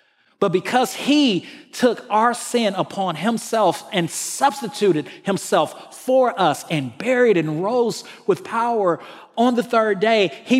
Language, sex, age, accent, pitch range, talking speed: English, male, 40-59, American, 165-230 Hz, 135 wpm